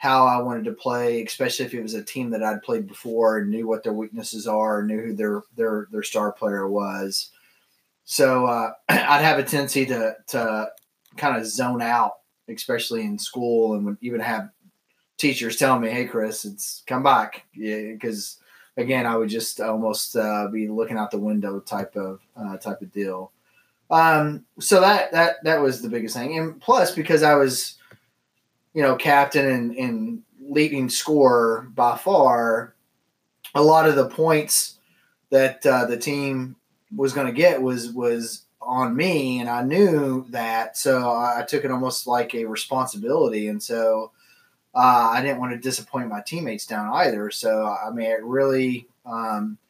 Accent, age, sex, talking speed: American, 30-49, male, 175 wpm